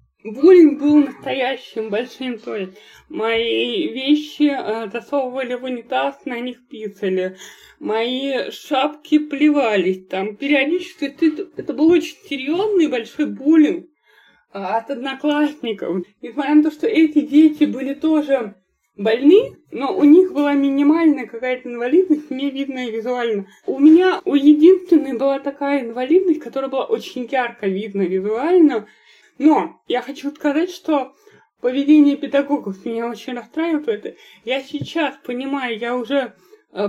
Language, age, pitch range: Russian, 20-39, 245-305 Hz